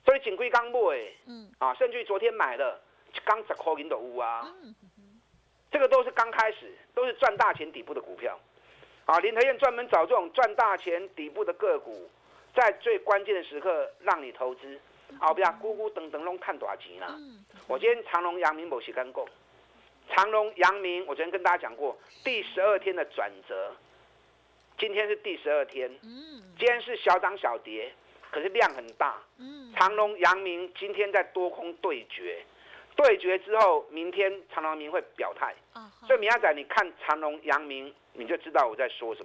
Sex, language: male, Chinese